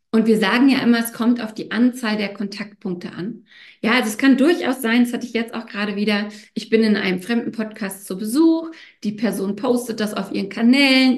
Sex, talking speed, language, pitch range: female, 220 wpm, German, 205-245 Hz